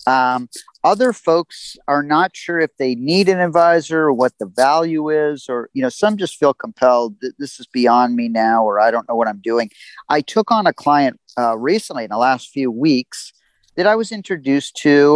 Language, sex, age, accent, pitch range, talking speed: English, male, 40-59, American, 125-165 Hz, 210 wpm